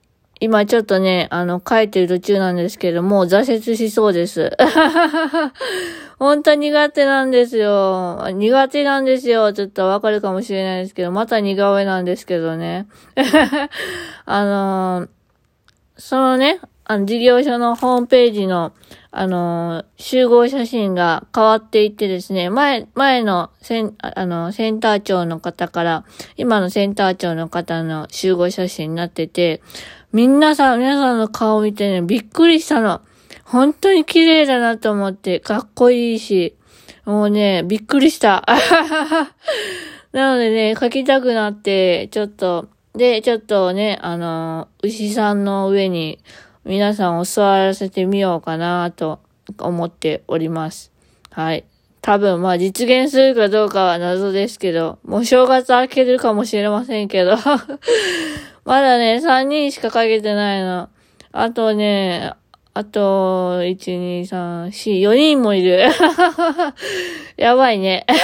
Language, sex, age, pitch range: Japanese, female, 20-39, 185-260 Hz